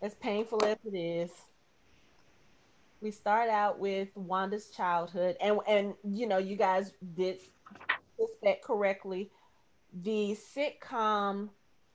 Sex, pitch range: female, 180-215 Hz